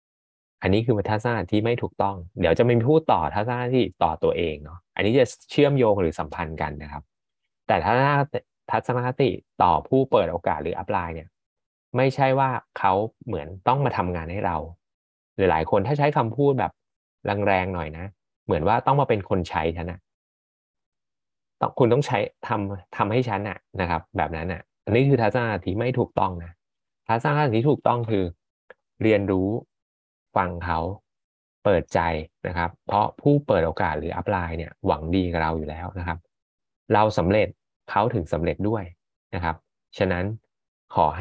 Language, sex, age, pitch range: Thai, male, 20-39, 85-120 Hz